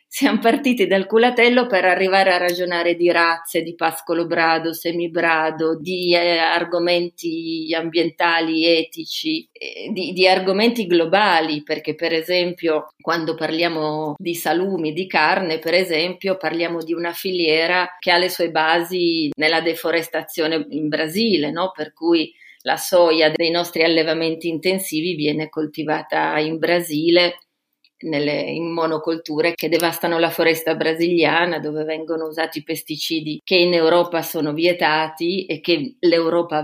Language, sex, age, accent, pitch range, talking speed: Italian, female, 30-49, native, 160-185 Hz, 130 wpm